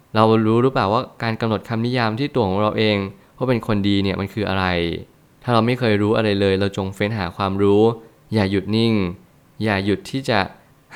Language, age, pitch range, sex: Thai, 20-39, 100-120 Hz, male